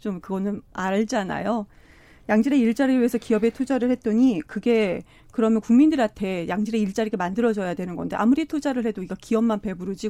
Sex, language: female, Korean